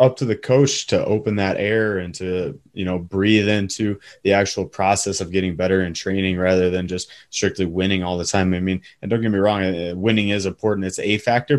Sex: male